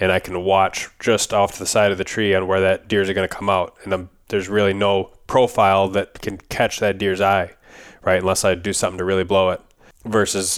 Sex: male